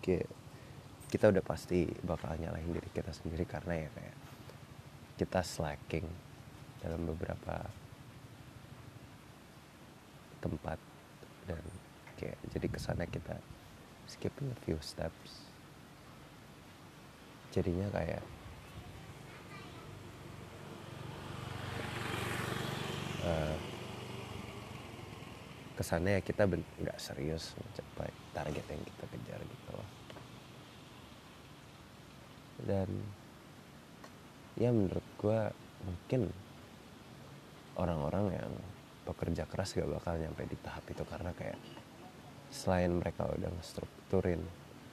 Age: 30-49